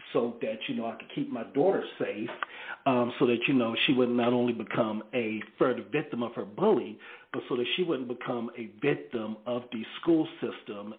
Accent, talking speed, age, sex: American, 210 wpm, 40-59, male